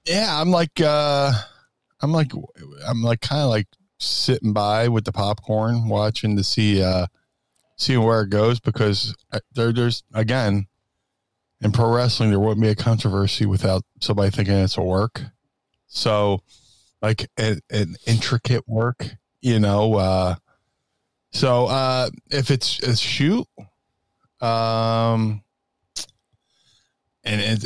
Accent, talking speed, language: American, 125 wpm, English